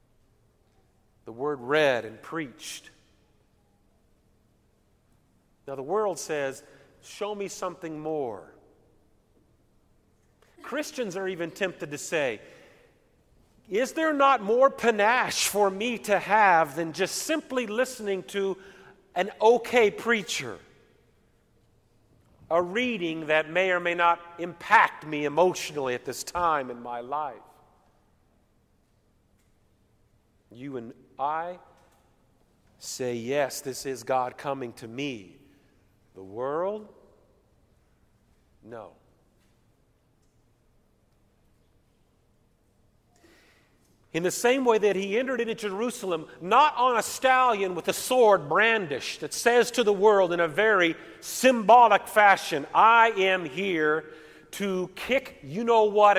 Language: English